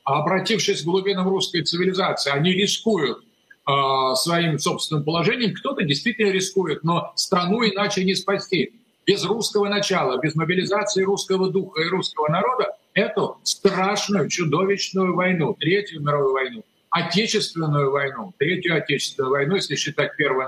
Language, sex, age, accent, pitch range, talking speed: Russian, male, 50-69, native, 155-205 Hz, 130 wpm